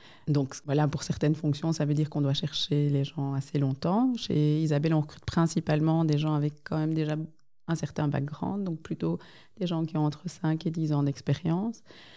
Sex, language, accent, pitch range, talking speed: female, Dutch, French, 145-165 Hz, 200 wpm